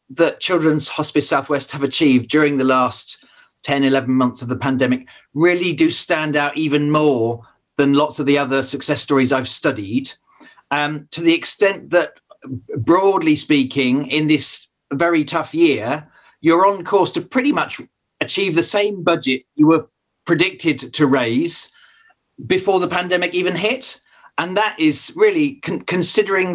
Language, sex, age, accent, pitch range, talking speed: English, male, 40-59, British, 135-175 Hz, 150 wpm